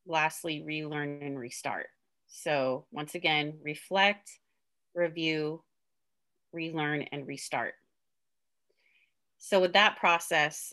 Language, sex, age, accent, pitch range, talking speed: English, female, 30-49, American, 150-190 Hz, 90 wpm